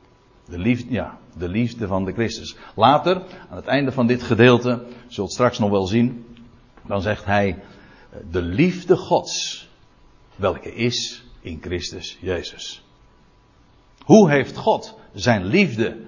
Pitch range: 105-170 Hz